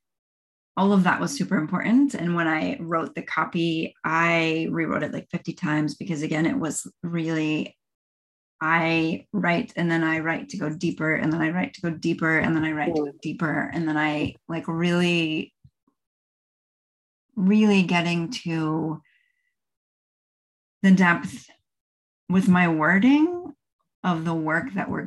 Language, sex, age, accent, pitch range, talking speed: English, female, 30-49, American, 160-195 Hz, 155 wpm